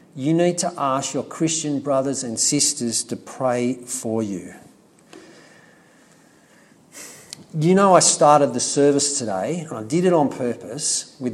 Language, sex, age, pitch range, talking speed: English, male, 50-69, 120-170 Hz, 145 wpm